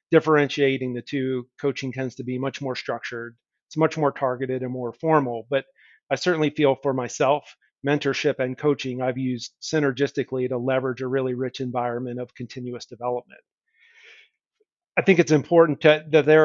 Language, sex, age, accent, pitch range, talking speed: English, male, 40-59, American, 130-145 Hz, 160 wpm